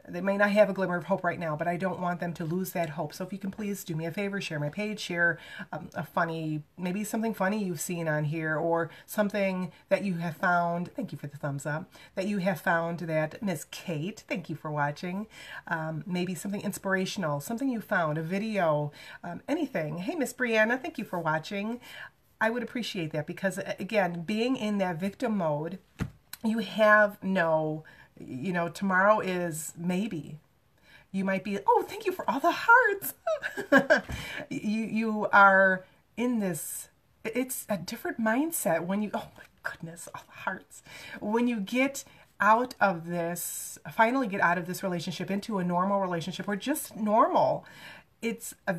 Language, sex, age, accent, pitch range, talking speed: English, female, 30-49, American, 170-215 Hz, 185 wpm